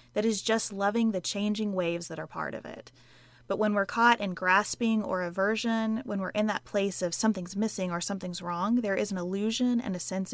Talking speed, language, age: 220 wpm, English, 20-39